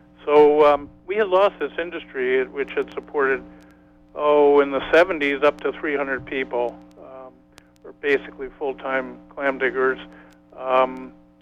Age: 50-69